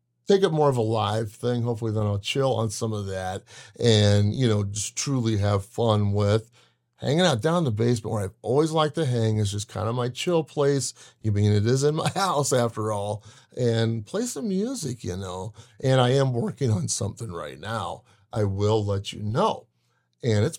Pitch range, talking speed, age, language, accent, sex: 105-135 Hz, 205 wpm, 30-49, English, American, male